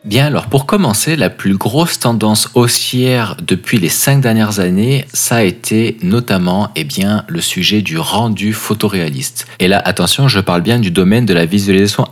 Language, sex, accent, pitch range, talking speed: French, male, French, 95-120 Hz, 180 wpm